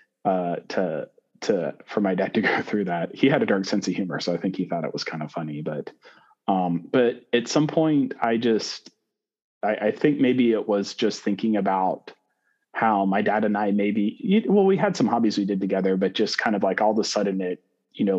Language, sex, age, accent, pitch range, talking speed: English, male, 30-49, American, 85-105 Hz, 230 wpm